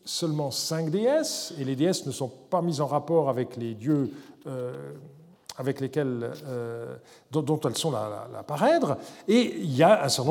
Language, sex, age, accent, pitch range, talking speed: French, male, 50-69, French, 135-185 Hz, 170 wpm